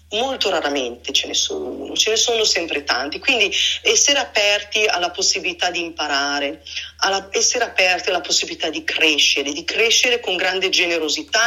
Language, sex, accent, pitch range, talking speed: Italian, female, native, 165-250 Hz, 150 wpm